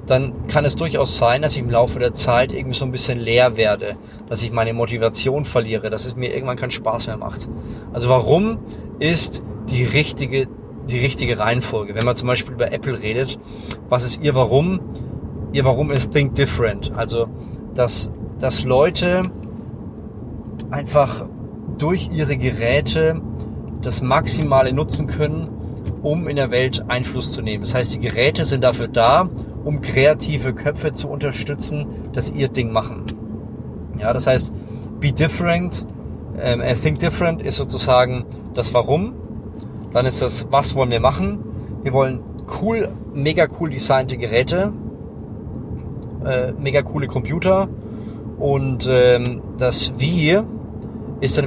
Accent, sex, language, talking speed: German, male, German, 145 wpm